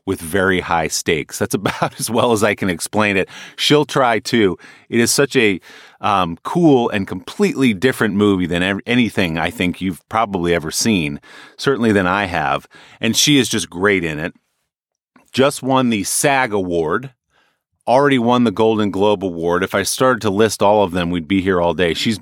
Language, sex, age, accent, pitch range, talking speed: English, male, 30-49, American, 90-120 Hz, 190 wpm